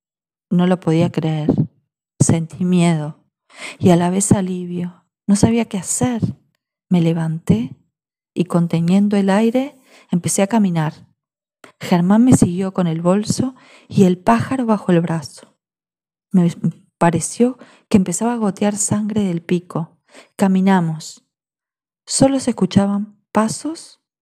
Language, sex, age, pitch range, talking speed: Spanish, female, 40-59, 170-210 Hz, 125 wpm